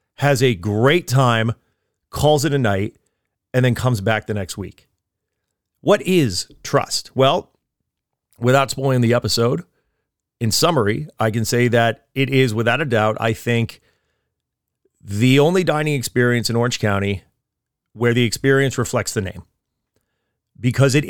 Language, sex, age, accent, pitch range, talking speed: English, male, 40-59, American, 115-145 Hz, 145 wpm